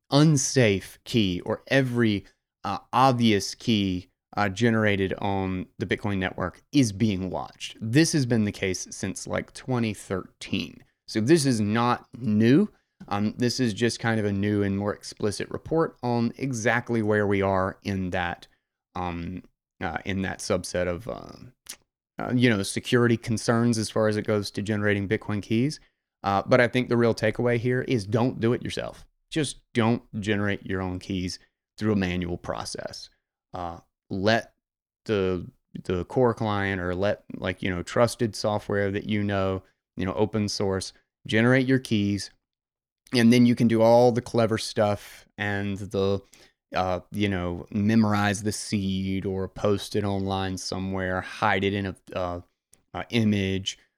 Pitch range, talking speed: 95-120 Hz, 160 wpm